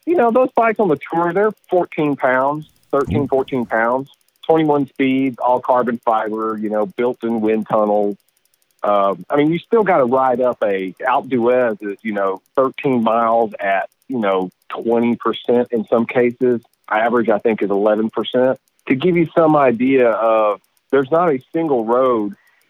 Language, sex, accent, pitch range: English, male, American, 110-140 Hz